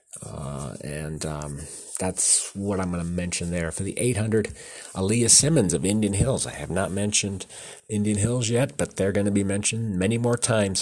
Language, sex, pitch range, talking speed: English, male, 80-95 Hz, 190 wpm